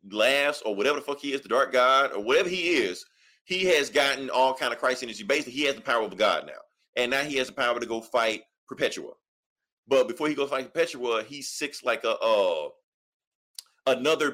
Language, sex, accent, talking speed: English, male, American, 220 wpm